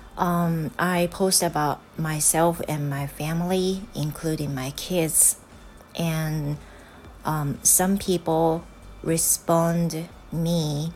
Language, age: Japanese, 30-49